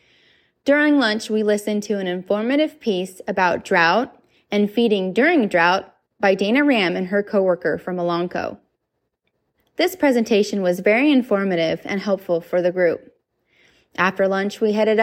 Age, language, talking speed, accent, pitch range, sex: 20-39, English, 145 wpm, American, 185-235 Hz, female